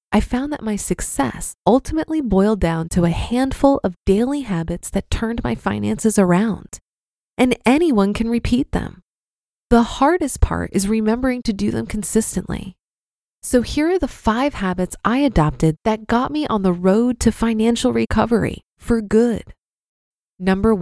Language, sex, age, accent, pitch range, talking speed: English, female, 20-39, American, 180-240 Hz, 155 wpm